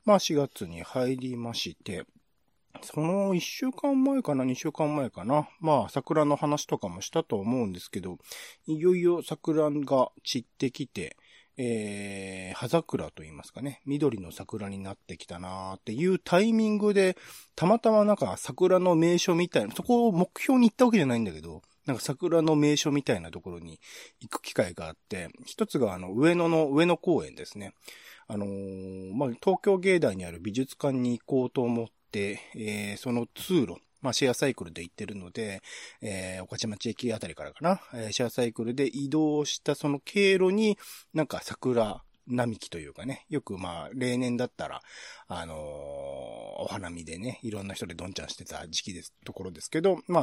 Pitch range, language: 105-170 Hz, Japanese